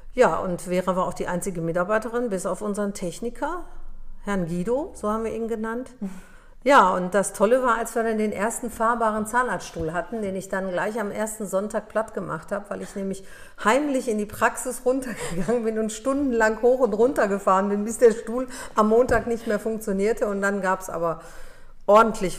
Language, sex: German, female